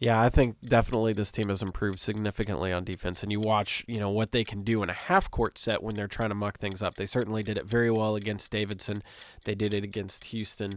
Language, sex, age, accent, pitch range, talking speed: English, male, 20-39, American, 100-115 Hz, 245 wpm